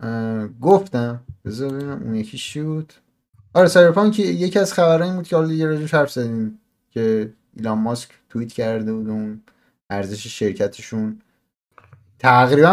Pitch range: 110-160 Hz